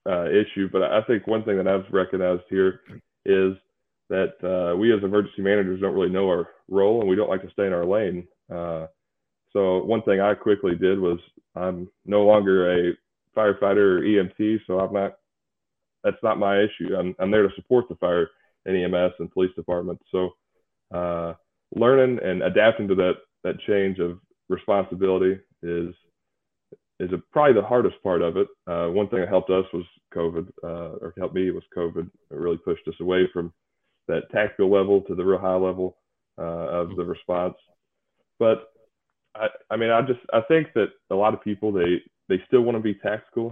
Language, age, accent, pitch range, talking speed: English, 20-39, American, 90-105 Hz, 190 wpm